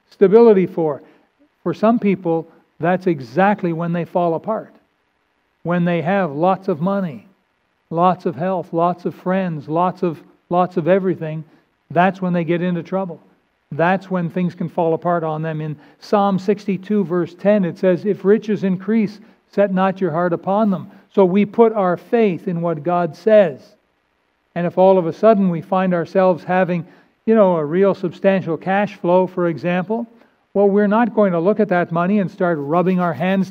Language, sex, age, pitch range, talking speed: English, male, 60-79, 170-205 Hz, 180 wpm